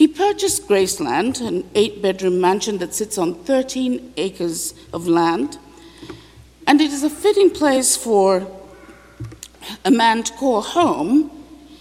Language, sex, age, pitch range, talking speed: English, female, 50-69, 190-285 Hz, 130 wpm